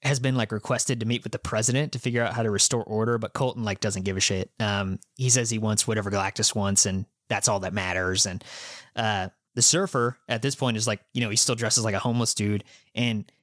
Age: 20-39